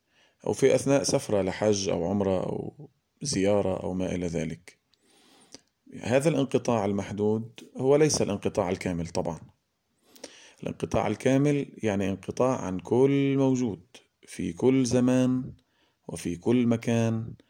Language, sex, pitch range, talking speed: Arabic, male, 95-120 Hz, 115 wpm